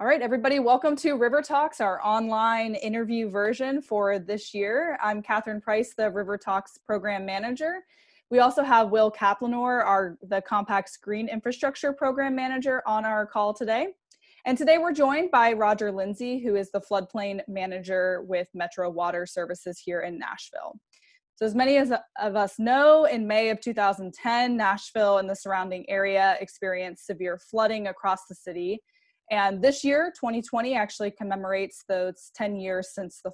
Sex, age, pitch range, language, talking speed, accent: female, 10-29, 195-245 Hz, English, 160 wpm, American